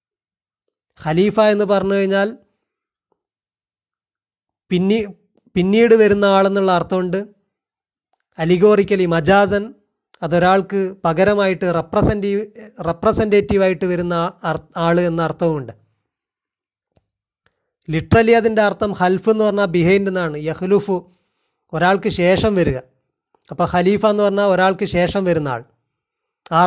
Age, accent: 30-49, native